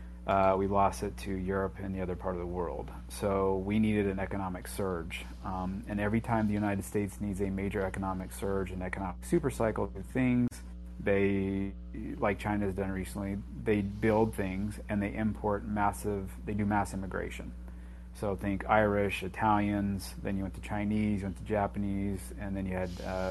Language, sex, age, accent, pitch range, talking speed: English, male, 30-49, American, 95-105 Hz, 185 wpm